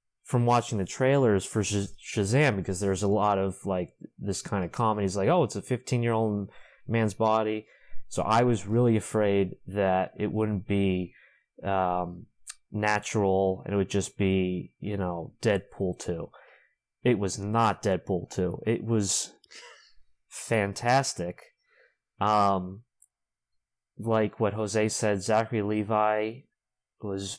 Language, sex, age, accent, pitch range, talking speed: English, male, 30-49, American, 95-110 Hz, 130 wpm